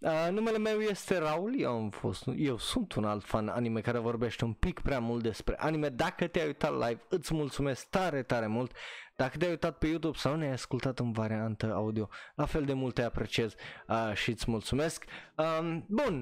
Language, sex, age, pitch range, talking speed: Romanian, male, 20-39, 115-155 Hz, 200 wpm